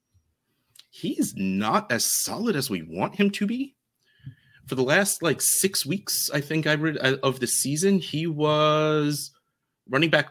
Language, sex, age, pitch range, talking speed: English, male, 30-49, 105-140 Hz, 155 wpm